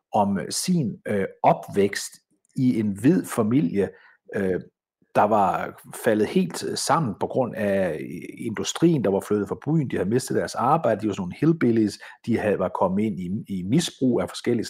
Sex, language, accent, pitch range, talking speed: male, Danish, native, 120-175 Hz, 165 wpm